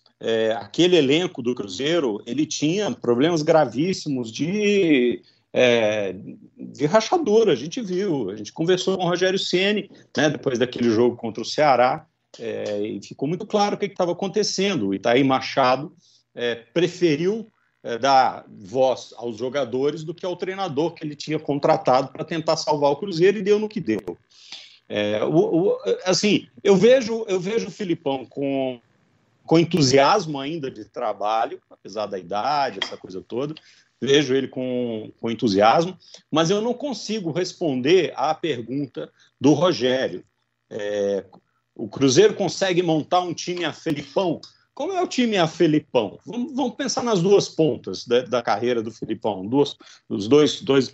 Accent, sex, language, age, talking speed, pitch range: Brazilian, male, Portuguese, 50-69, 155 wpm, 125-195 Hz